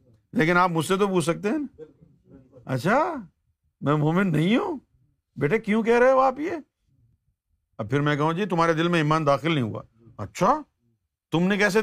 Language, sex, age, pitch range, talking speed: Urdu, male, 50-69, 125-185 Hz, 185 wpm